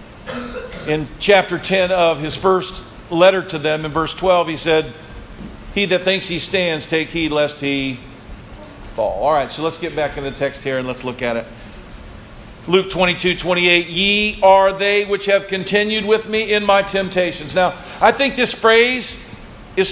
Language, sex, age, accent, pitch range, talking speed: English, male, 50-69, American, 150-195 Hz, 175 wpm